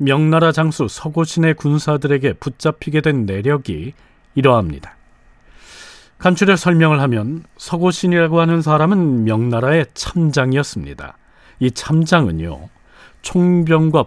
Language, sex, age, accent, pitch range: Korean, male, 40-59, native, 130-170 Hz